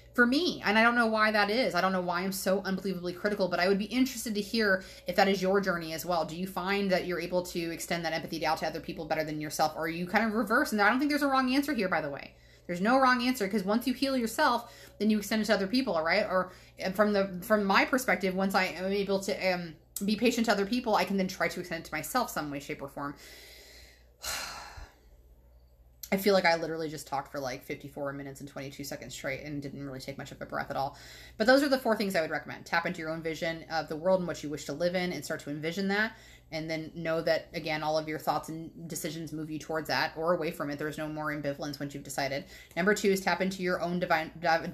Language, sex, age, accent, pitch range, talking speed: English, female, 30-49, American, 155-195 Hz, 270 wpm